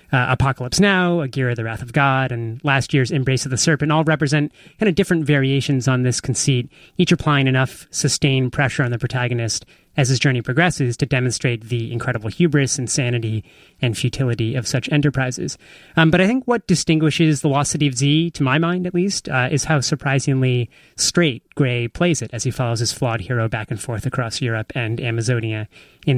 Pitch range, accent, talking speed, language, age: 125-155 Hz, American, 195 wpm, English, 30-49